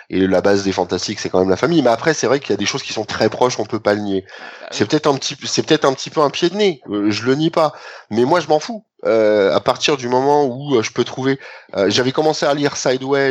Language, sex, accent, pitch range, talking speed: French, male, French, 105-140 Hz, 295 wpm